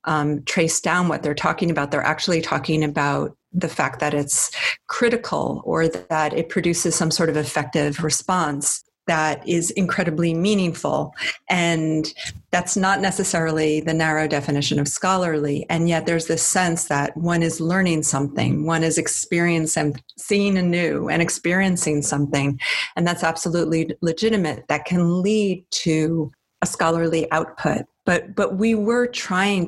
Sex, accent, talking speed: female, American, 145 wpm